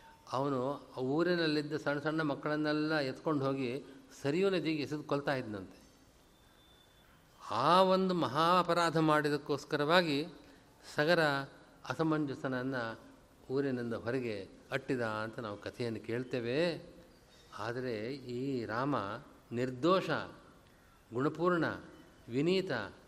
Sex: male